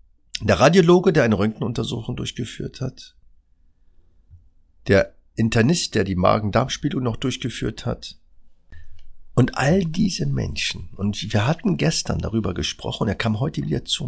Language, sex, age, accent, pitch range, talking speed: German, male, 50-69, German, 80-115 Hz, 130 wpm